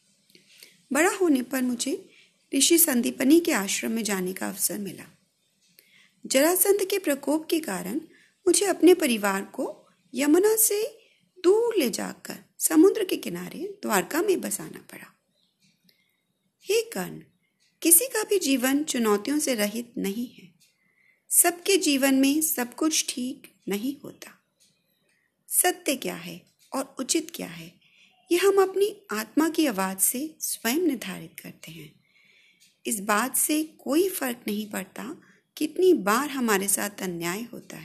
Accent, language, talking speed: native, Hindi, 135 wpm